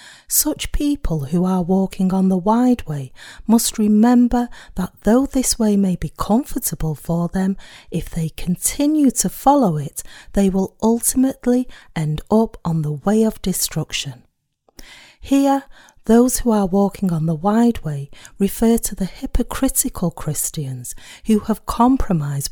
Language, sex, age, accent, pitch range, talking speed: English, female, 40-59, British, 160-235 Hz, 140 wpm